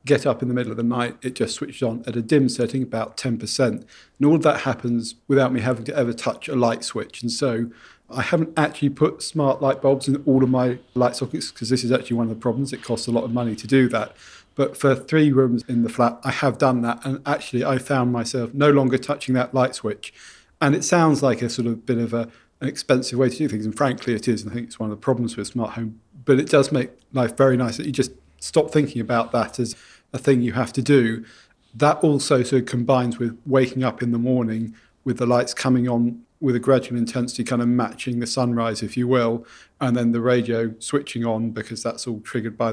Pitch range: 115-135 Hz